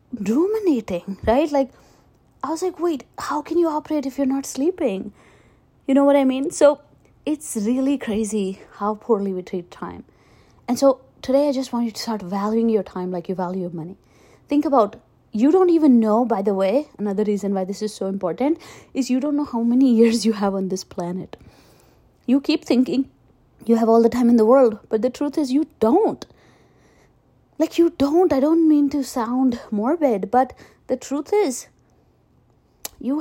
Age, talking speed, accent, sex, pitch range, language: 20-39, 190 wpm, Indian, female, 225-290 Hz, English